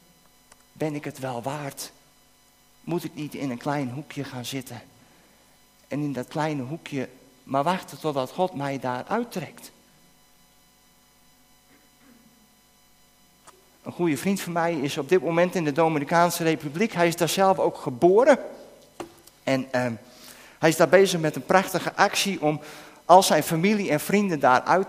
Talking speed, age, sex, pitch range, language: 150 wpm, 50-69, male, 135-170 Hz, Dutch